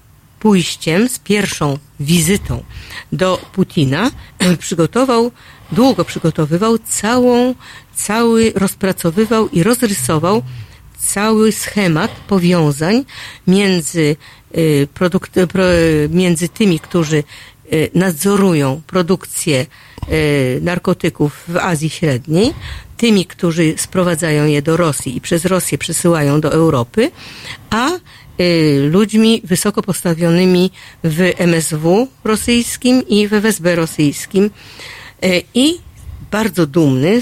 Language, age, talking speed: Polish, 50-69, 90 wpm